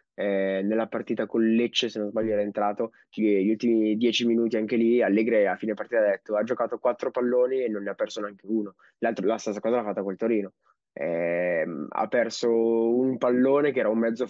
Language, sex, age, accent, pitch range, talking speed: Italian, male, 20-39, native, 110-120 Hz, 210 wpm